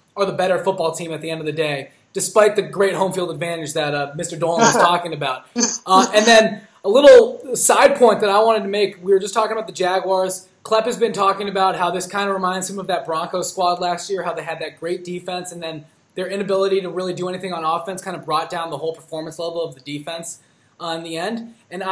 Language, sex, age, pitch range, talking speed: English, male, 20-39, 170-205 Hz, 250 wpm